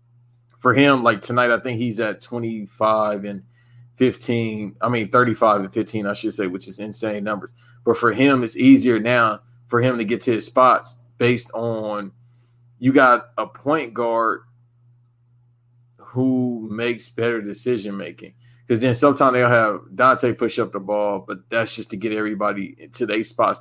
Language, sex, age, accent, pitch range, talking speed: English, male, 20-39, American, 110-125 Hz, 170 wpm